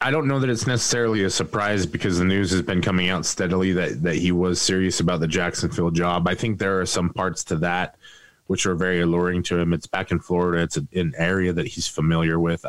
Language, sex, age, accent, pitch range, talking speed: English, male, 20-39, American, 85-105 Hz, 235 wpm